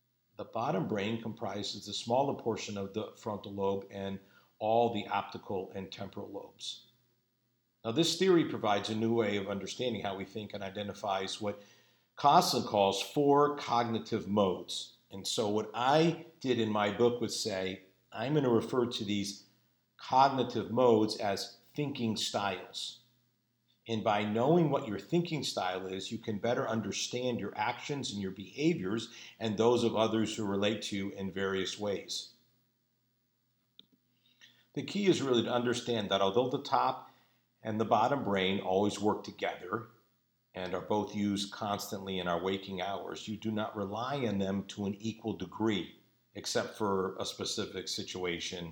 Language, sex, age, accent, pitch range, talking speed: English, male, 50-69, American, 100-120 Hz, 160 wpm